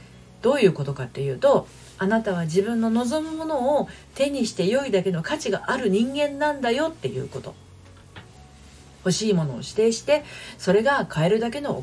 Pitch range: 145-220 Hz